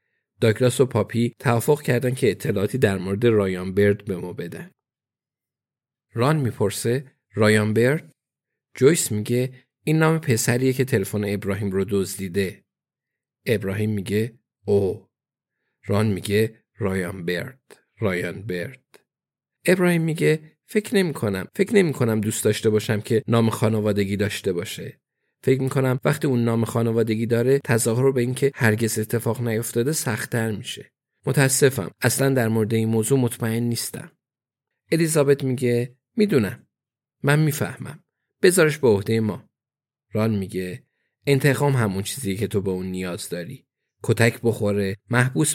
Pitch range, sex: 105-130 Hz, male